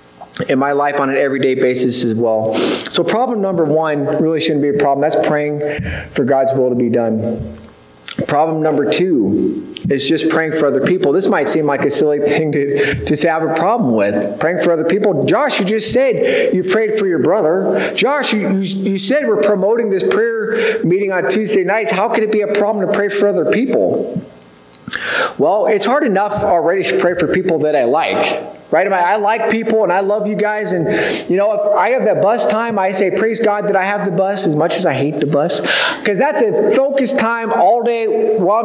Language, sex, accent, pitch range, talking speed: English, male, American, 155-230 Hz, 220 wpm